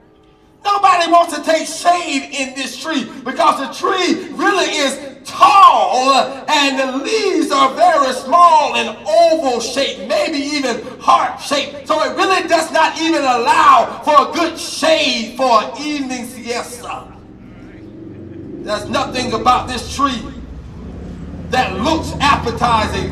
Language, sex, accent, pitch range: English, male, American, 270-330 Hz